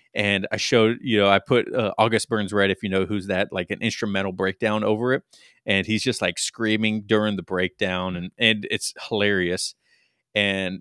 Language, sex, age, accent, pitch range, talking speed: English, male, 30-49, American, 95-115 Hz, 195 wpm